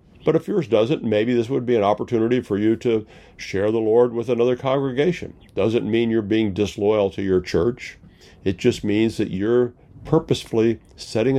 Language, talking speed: English, 180 wpm